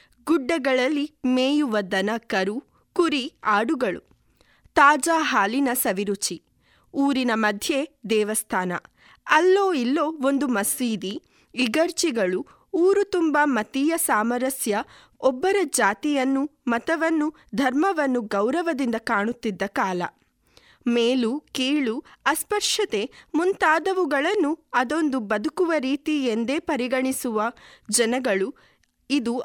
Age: 20-39